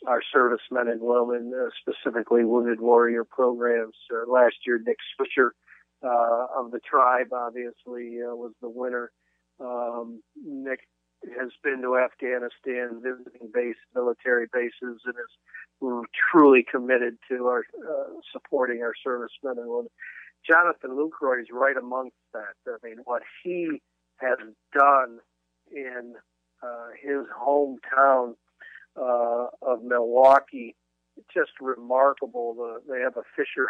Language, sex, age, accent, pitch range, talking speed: English, male, 50-69, American, 120-135 Hz, 125 wpm